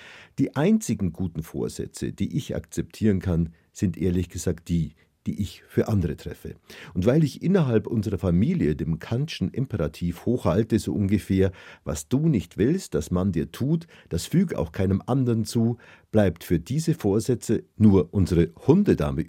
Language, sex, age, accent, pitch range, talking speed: German, male, 50-69, German, 85-115 Hz, 155 wpm